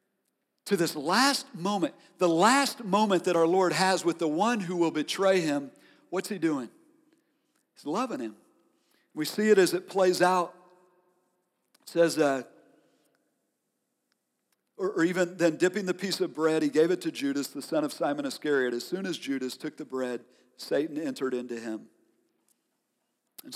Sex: male